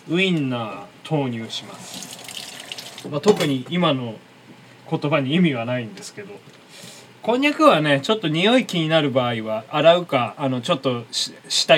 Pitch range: 125-175 Hz